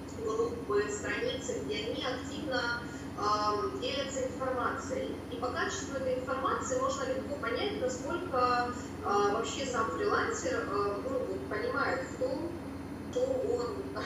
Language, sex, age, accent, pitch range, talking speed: Russian, female, 20-39, native, 250-405 Hz, 105 wpm